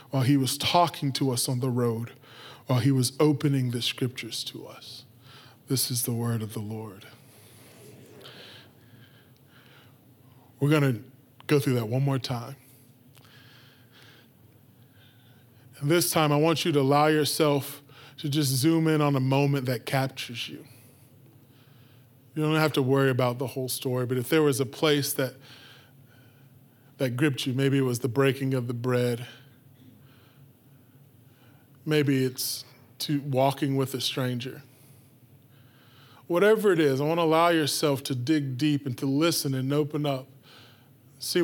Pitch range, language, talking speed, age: 125-140 Hz, English, 150 wpm, 20-39